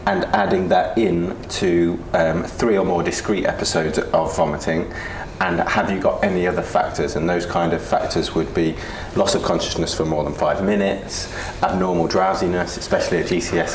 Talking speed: 175 wpm